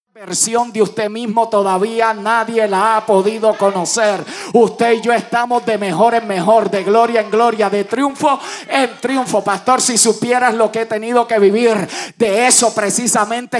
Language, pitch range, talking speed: Spanish, 160-235 Hz, 170 wpm